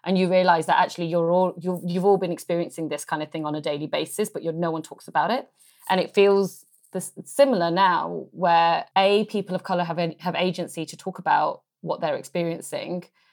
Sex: female